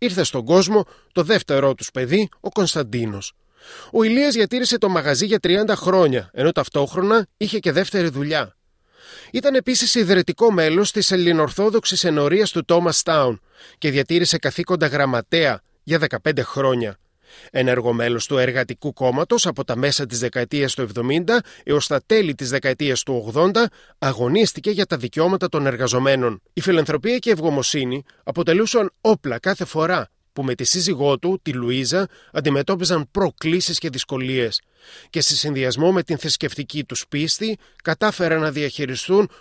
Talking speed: 145 wpm